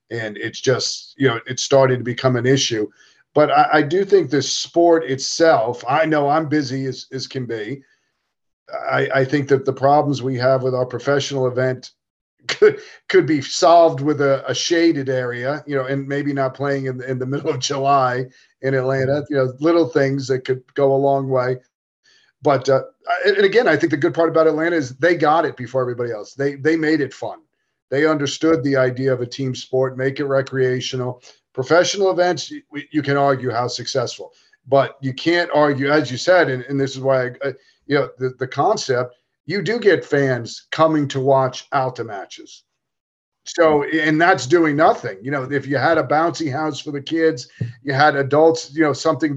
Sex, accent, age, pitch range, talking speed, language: male, American, 40-59, 130-160 Hz, 195 wpm, English